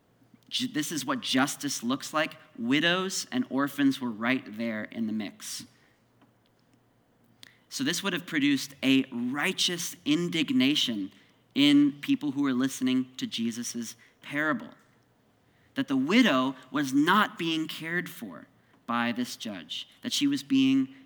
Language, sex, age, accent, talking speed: English, male, 40-59, American, 130 wpm